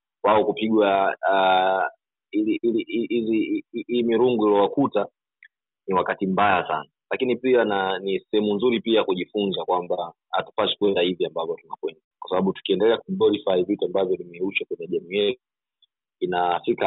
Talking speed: 130 wpm